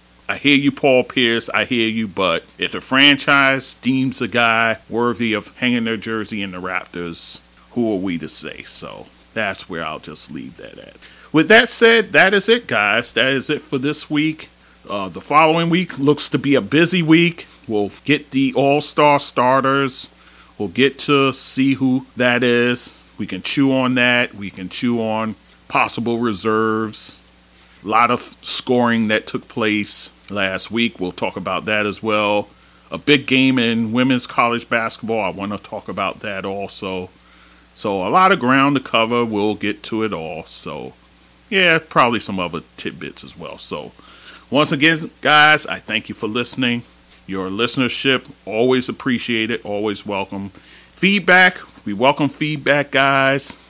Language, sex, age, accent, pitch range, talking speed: English, male, 40-59, American, 105-140 Hz, 170 wpm